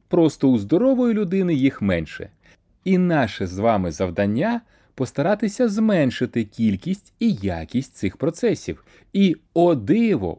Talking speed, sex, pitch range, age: 125 wpm, male, 100-160 Hz, 30-49